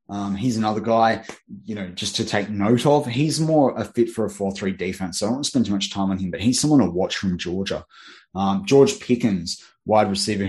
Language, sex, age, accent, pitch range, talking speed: English, male, 20-39, Australian, 95-105 Hz, 240 wpm